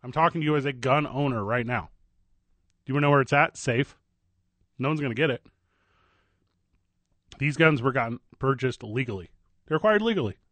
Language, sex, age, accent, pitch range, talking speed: English, male, 30-49, American, 90-140 Hz, 190 wpm